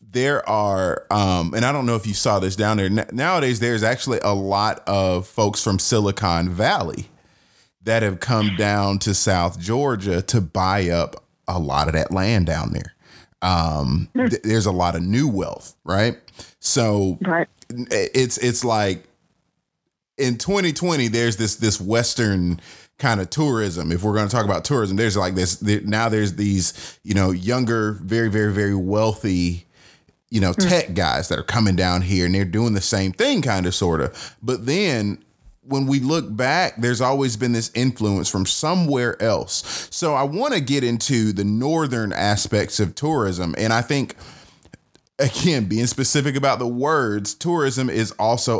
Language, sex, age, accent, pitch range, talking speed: English, male, 30-49, American, 95-120 Hz, 175 wpm